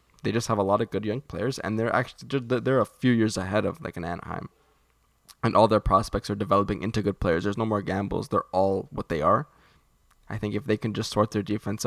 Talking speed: 245 wpm